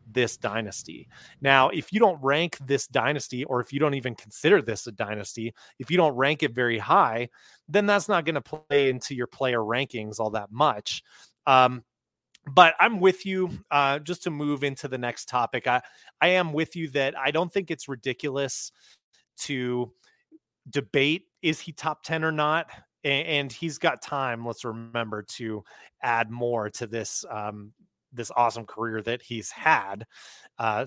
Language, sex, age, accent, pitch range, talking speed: English, male, 30-49, American, 115-145 Hz, 175 wpm